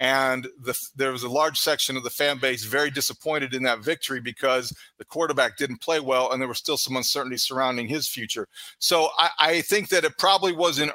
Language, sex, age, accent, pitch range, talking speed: English, male, 40-59, American, 135-170 Hz, 215 wpm